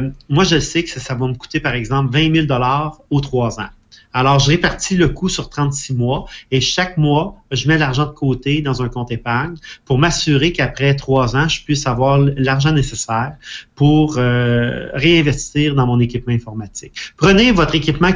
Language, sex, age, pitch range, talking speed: French, male, 30-49, 125-150 Hz, 185 wpm